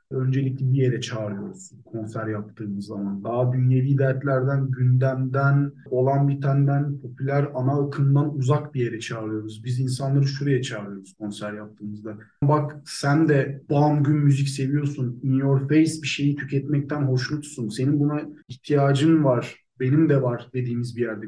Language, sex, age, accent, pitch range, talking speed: Turkish, male, 40-59, native, 130-165 Hz, 140 wpm